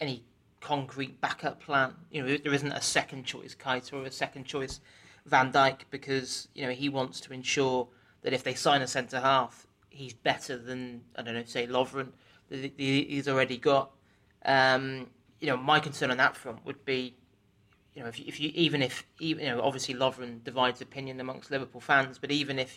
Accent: British